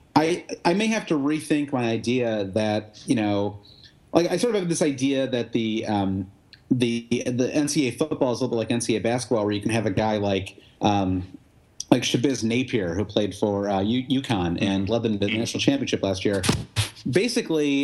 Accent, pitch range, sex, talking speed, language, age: American, 105-140 Hz, male, 200 wpm, English, 30-49